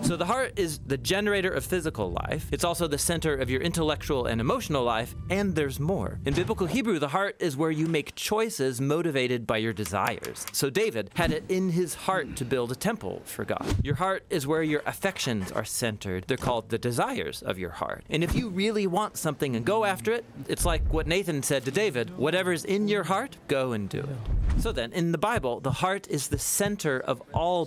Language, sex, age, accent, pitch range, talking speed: English, male, 30-49, American, 115-170 Hz, 220 wpm